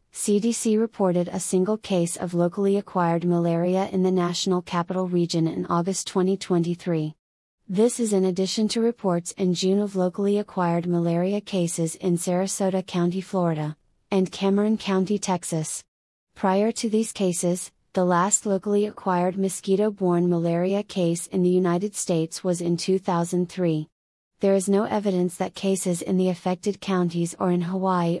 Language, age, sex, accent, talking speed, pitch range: English, 30-49, female, American, 150 wpm, 175-195 Hz